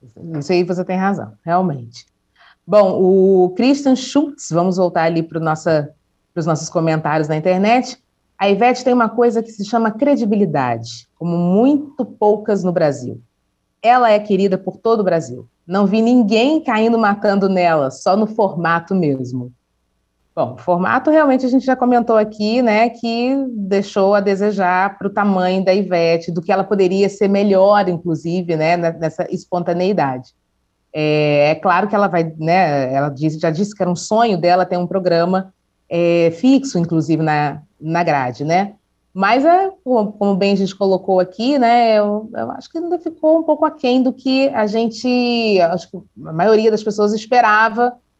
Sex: female